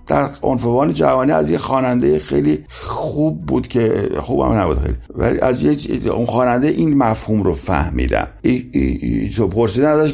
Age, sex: 50-69, male